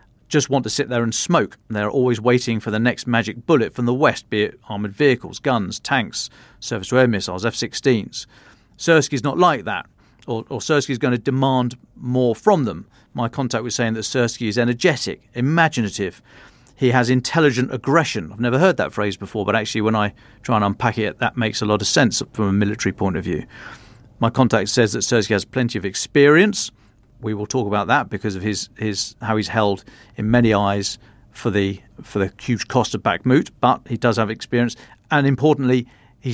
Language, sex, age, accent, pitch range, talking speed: English, male, 40-59, British, 110-130 Hz, 195 wpm